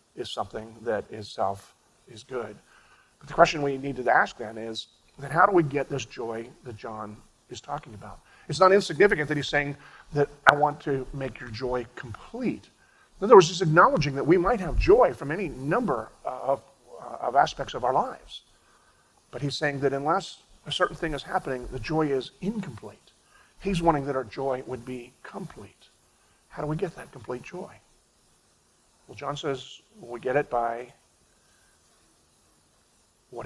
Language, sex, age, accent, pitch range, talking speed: English, male, 40-59, American, 125-155 Hz, 175 wpm